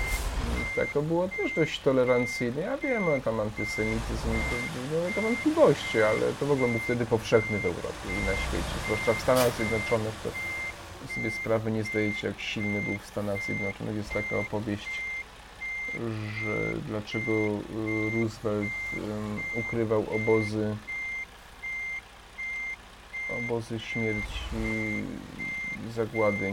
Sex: male